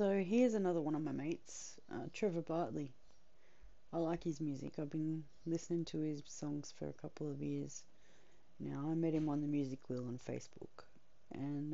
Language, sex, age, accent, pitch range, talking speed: English, female, 30-49, Australian, 135-175 Hz, 185 wpm